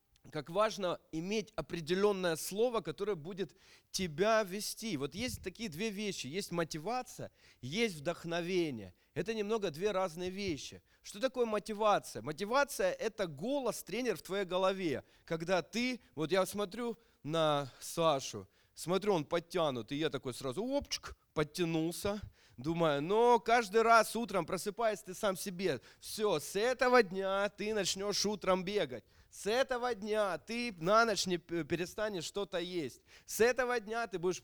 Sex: male